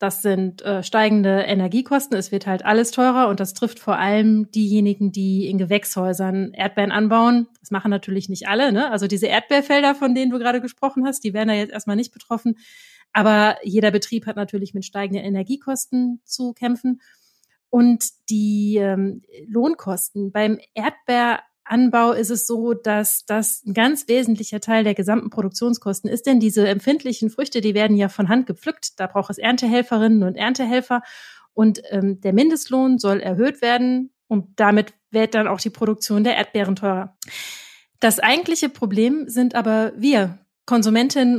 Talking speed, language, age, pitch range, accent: 160 wpm, German, 30-49, 205-240 Hz, German